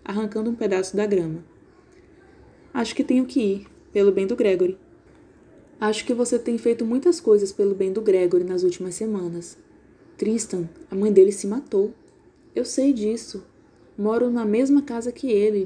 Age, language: 20-39, Portuguese